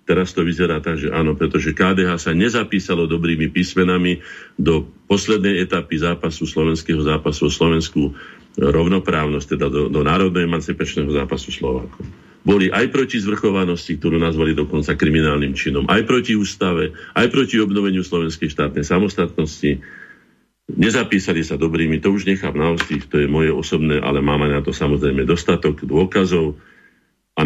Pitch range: 75-95 Hz